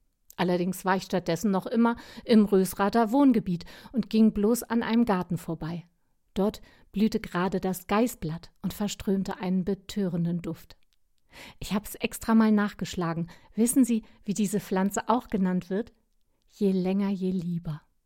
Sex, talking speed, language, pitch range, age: female, 145 wpm, German, 175-220 Hz, 50-69